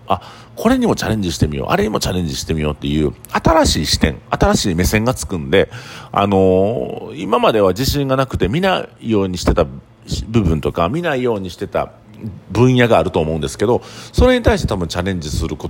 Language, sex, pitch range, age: Japanese, male, 80-120 Hz, 50-69